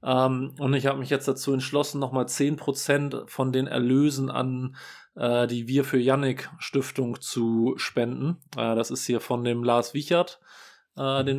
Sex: male